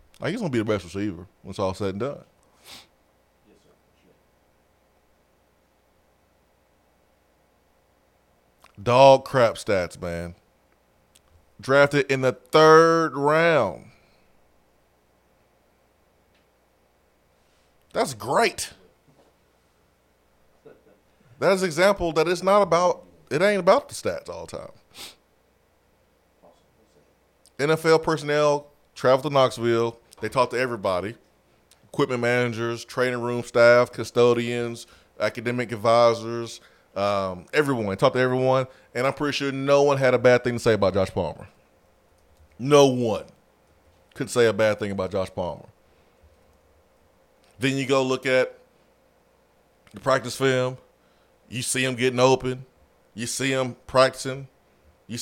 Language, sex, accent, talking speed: English, male, American, 115 wpm